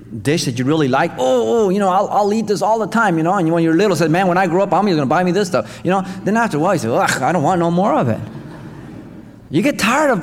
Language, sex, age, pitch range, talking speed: English, male, 30-49, 115-195 Hz, 325 wpm